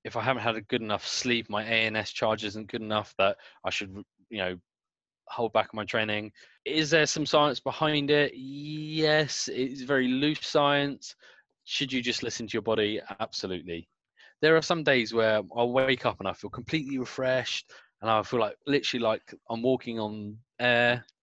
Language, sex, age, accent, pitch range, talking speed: English, male, 20-39, British, 105-130 Hz, 185 wpm